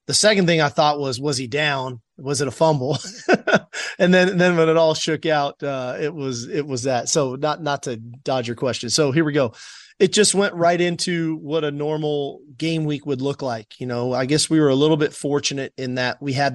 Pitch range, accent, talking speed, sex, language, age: 125-150 Hz, American, 240 wpm, male, English, 30-49